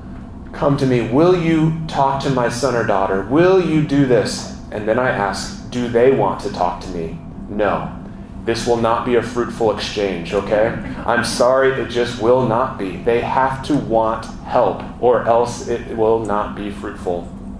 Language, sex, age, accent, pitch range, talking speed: English, male, 30-49, American, 105-135 Hz, 185 wpm